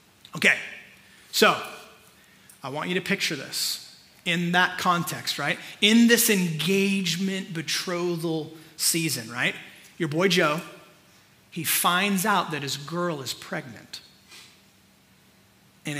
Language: English